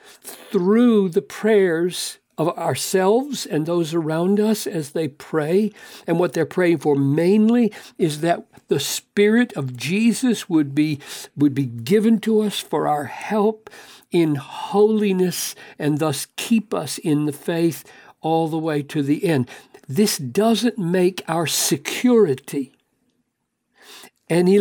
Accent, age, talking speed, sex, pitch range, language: American, 60-79, 135 wpm, male, 150-200 Hz, English